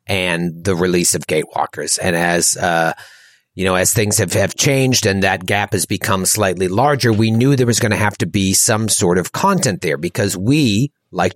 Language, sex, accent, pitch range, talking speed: English, male, American, 100-140 Hz, 205 wpm